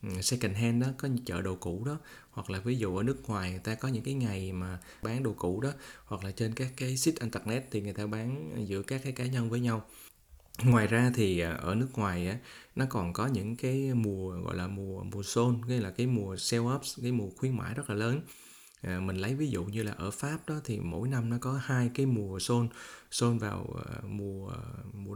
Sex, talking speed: male, 235 wpm